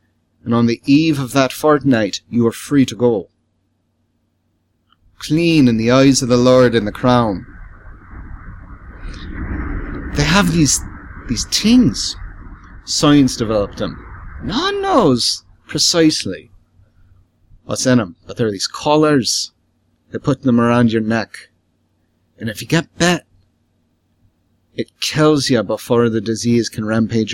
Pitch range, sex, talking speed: 95-130 Hz, male, 130 wpm